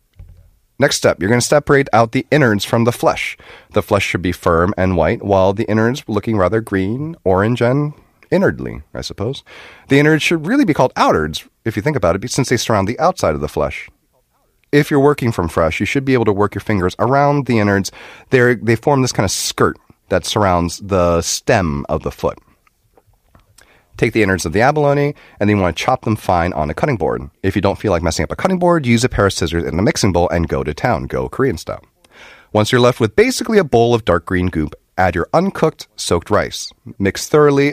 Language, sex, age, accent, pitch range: Korean, male, 30-49, American, 90-130 Hz